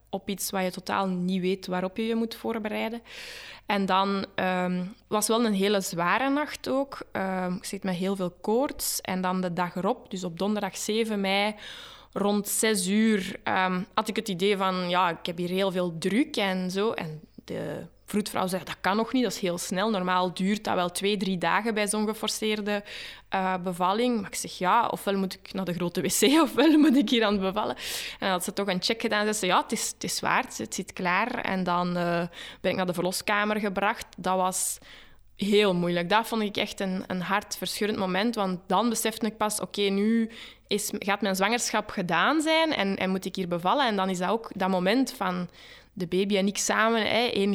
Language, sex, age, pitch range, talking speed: Dutch, female, 20-39, 185-215 Hz, 220 wpm